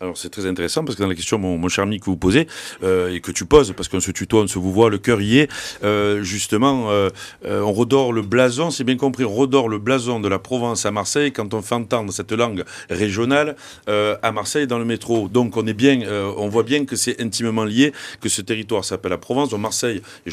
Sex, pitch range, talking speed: male, 105-130 Hz, 250 wpm